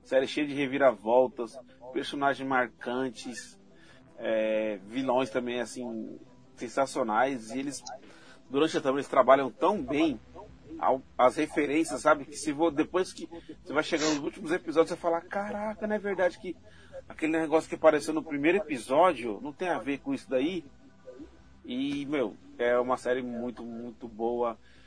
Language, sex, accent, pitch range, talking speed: Portuguese, male, Brazilian, 125-165 Hz, 155 wpm